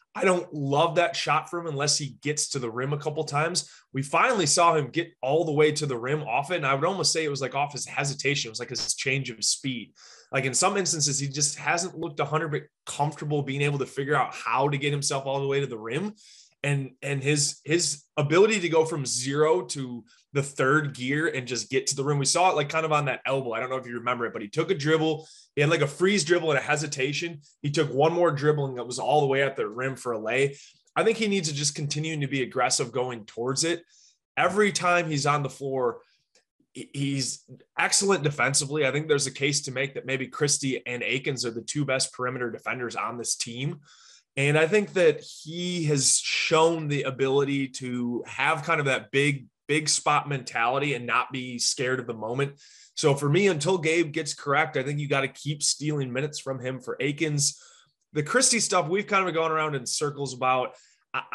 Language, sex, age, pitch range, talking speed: English, male, 20-39, 135-160 Hz, 230 wpm